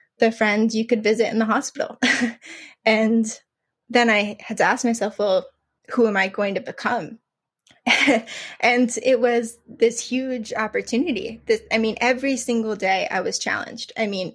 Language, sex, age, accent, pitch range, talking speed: English, female, 20-39, American, 205-240 Hz, 165 wpm